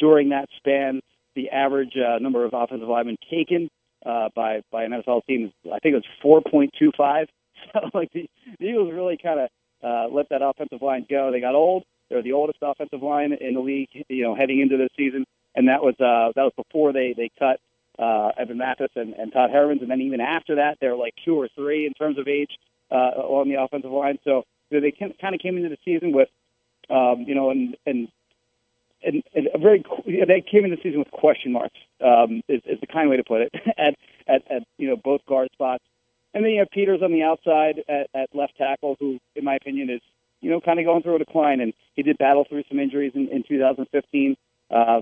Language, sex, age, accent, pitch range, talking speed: English, male, 40-59, American, 125-155 Hz, 230 wpm